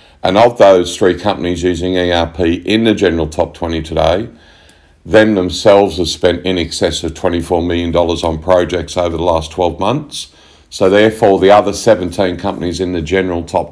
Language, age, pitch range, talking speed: English, 50-69, 80-100 Hz, 170 wpm